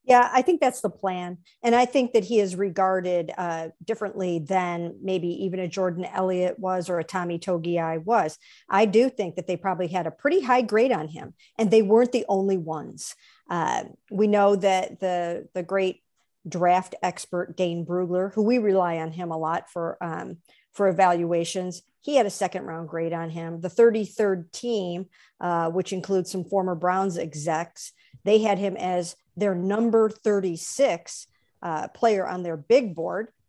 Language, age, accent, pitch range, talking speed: English, 50-69, American, 170-200 Hz, 175 wpm